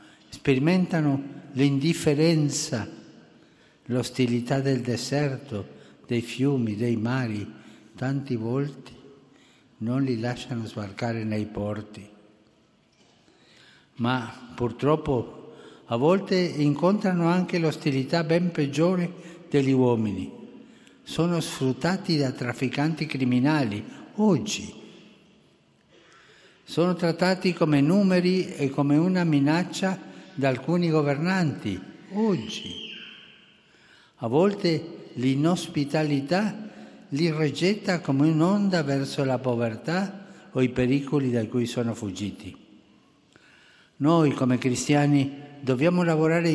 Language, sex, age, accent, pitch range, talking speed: Italian, male, 60-79, native, 125-170 Hz, 90 wpm